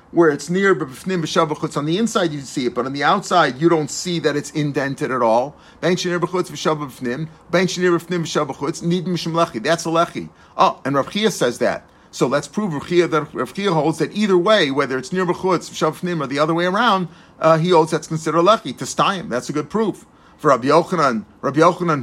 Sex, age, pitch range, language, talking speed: male, 40-59, 150-180 Hz, English, 230 wpm